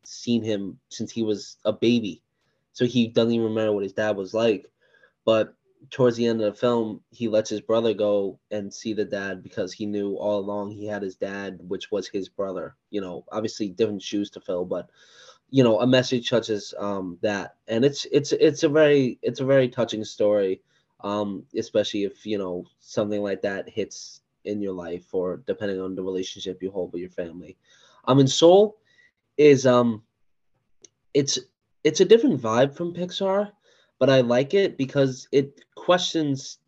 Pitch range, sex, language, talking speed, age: 105-130 Hz, male, English, 185 wpm, 20-39